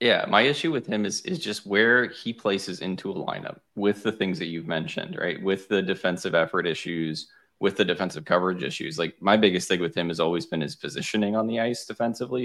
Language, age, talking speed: English, 20-39, 220 wpm